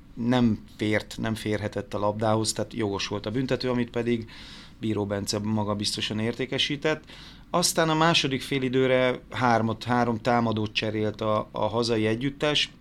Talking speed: 145 wpm